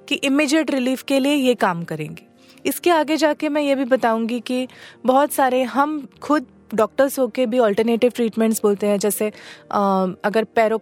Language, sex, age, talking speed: Hindi, female, 20-39, 165 wpm